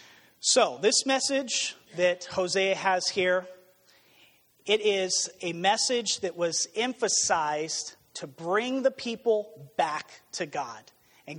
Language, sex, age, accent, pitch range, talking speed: English, male, 30-49, American, 160-210 Hz, 115 wpm